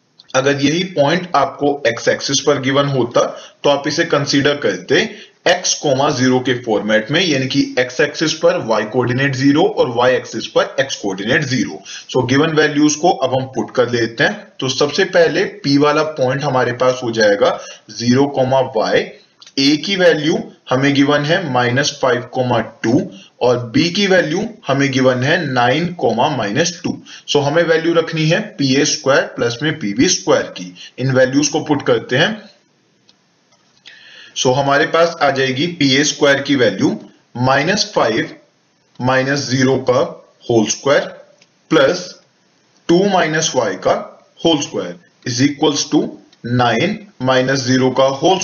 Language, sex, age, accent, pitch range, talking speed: English, male, 20-39, Indian, 130-165 Hz, 150 wpm